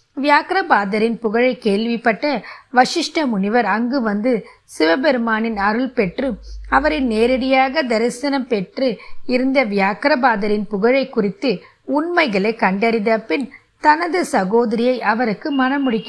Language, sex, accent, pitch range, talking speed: Tamil, female, native, 215-275 Hz, 90 wpm